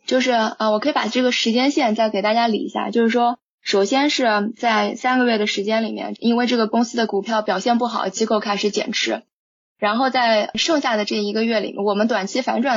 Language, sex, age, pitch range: Chinese, female, 20-39, 210-240 Hz